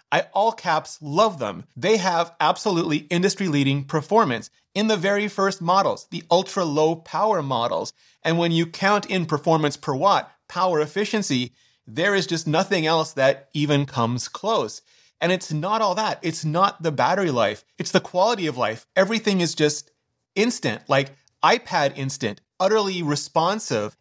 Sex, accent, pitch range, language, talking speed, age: male, American, 140-190 Hz, English, 160 wpm, 30-49